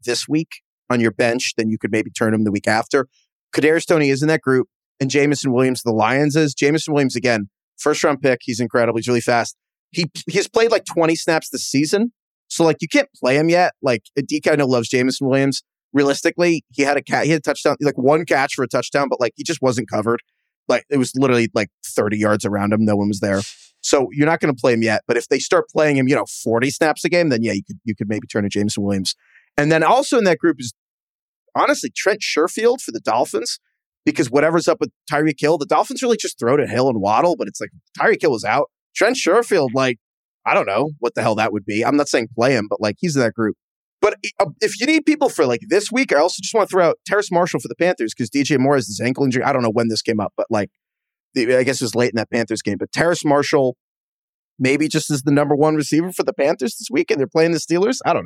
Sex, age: male, 30-49